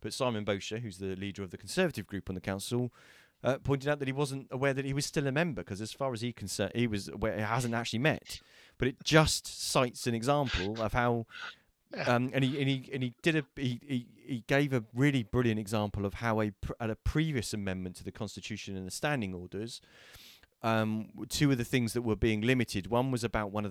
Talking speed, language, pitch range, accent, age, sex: 235 wpm, English, 100-130 Hz, British, 30-49, male